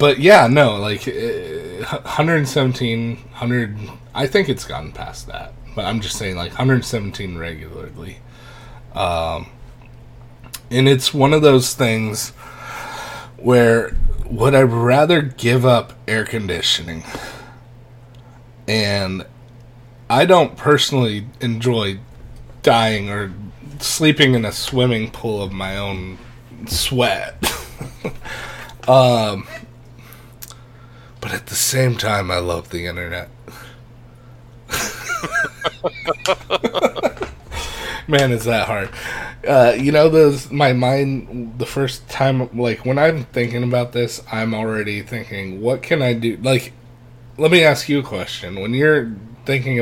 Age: 30-49